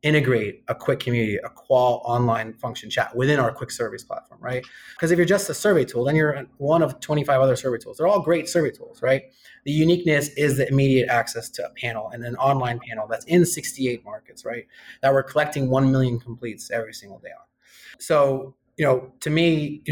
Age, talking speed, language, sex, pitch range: 30-49, 210 wpm, English, male, 125-150 Hz